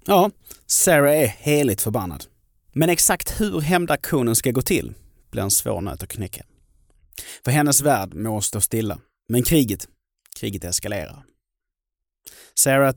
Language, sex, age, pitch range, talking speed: Swedish, male, 30-49, 100-130 Hz, 135 wpm